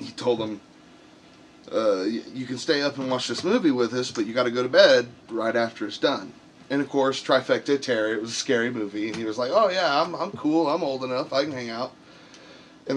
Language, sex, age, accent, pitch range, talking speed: English, male, 30-49, American, 115-140 Hz, 230 wpm